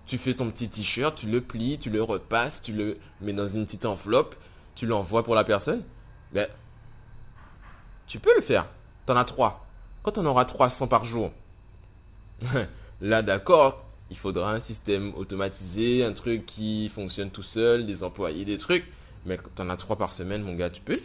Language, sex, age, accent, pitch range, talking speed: French, male, 20-39, French, 90-115 Hz, 195 wpm